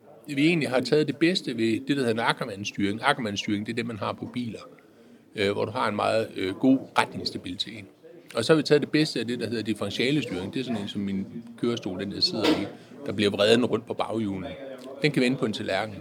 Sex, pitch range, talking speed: male, 110-145 Hz, 230 wpm